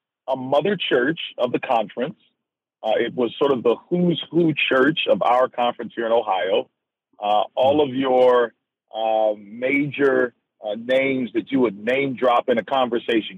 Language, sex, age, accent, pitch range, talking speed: English, male, 50-69, American, 120-155 Hz, 165 wpm